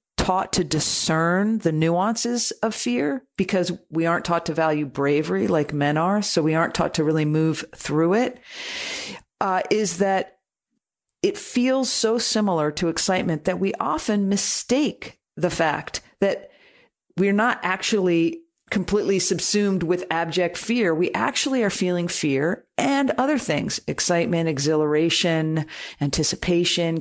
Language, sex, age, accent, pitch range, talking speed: English, female, 40-59, American, 160-220 Hz, 135 wpm